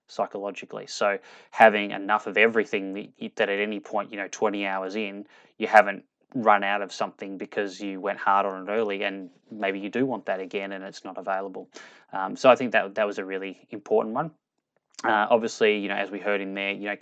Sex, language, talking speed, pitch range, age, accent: male, English, 215 wpm, 95-105 Hz, 10-29, Australian